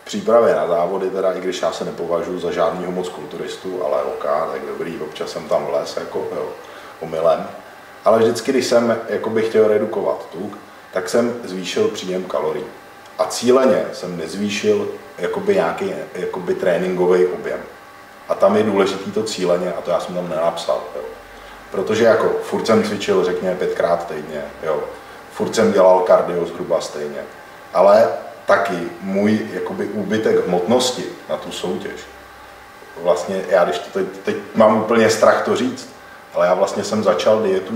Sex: male